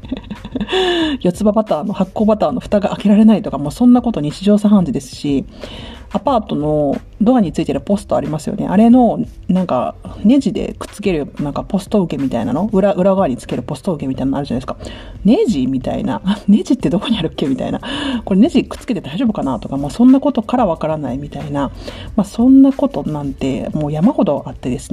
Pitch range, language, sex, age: 160-235 Hz, Japanese, female, 40-59